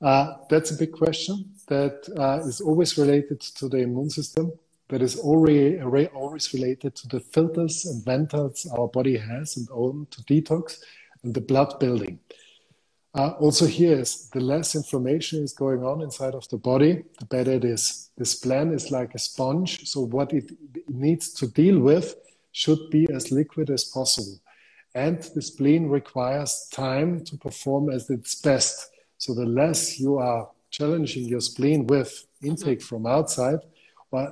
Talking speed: 165 wpm